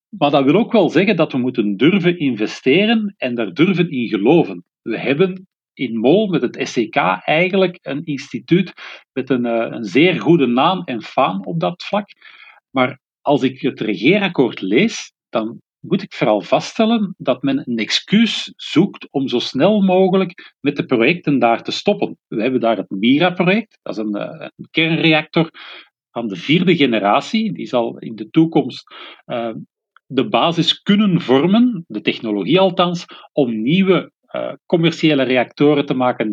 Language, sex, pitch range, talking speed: Dutch, male, 130-185 Hz, 160 wpm